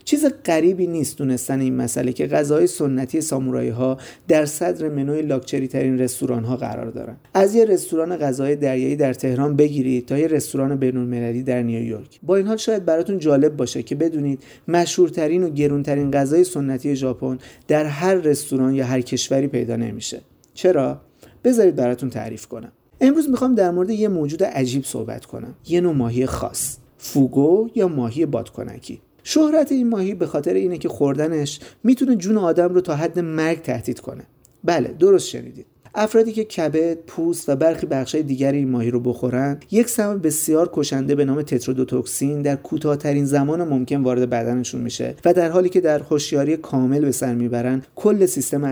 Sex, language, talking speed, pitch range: male, Persian, 170 wpm, 130-165 Hz